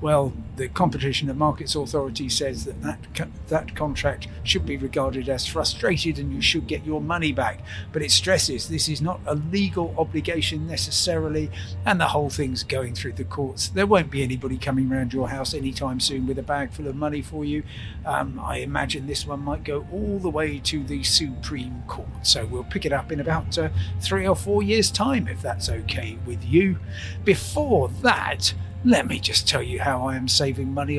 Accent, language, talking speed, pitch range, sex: British, English, 200 wpm, 95-145 Hz, male